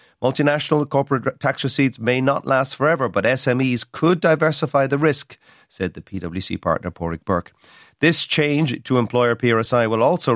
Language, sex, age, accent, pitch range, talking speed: English, male, 40-59, Irish, 100-135 Hz, 155 wpm